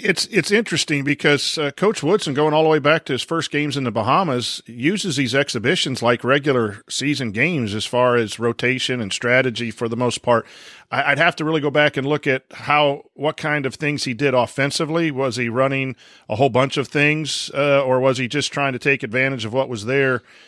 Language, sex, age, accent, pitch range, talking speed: English, male, 40-59, American, 125-150 Hz, 215 wpm